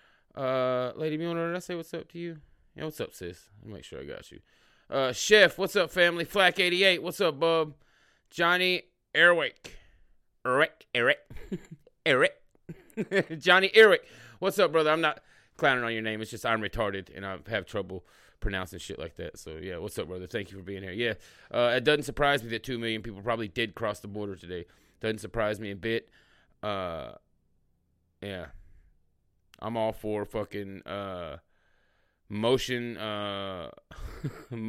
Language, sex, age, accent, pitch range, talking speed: English, male, 30-49, American, 100-150 Hz, 175 wpm